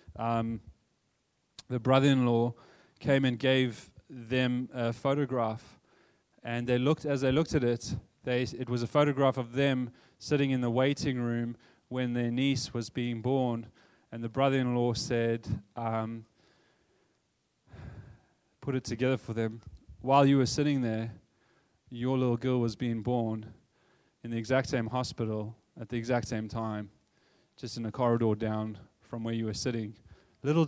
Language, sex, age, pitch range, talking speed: English, male, 20-39, 115-130 Hz, 150 wpm